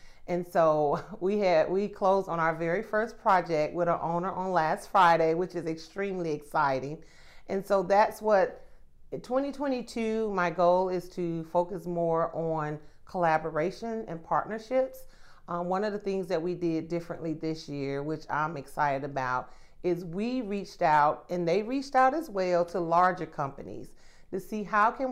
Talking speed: 165 wpm